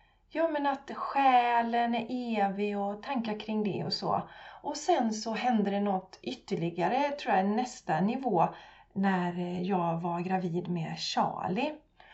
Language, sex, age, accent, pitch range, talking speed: Swedish, female, 30-49, native, 185-255 Hz, 145 wpm